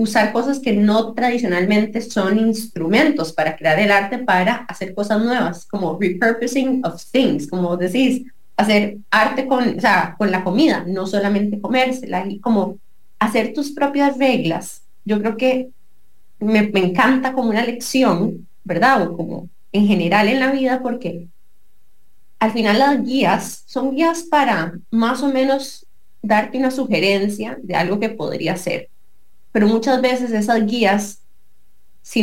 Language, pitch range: English, 195-250 Hz